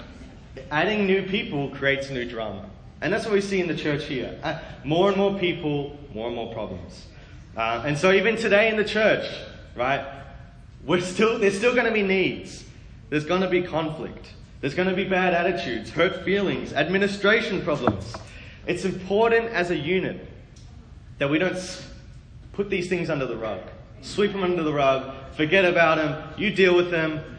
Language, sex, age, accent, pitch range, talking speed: English, male, 20-39, Australian, 130-195 Hz, 175 wpm